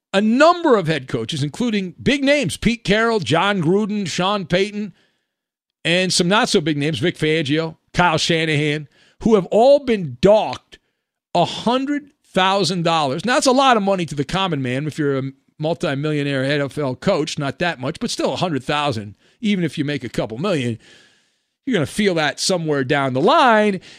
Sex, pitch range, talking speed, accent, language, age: male, 155-225 Hz, 165 wpm, American, English, 50-69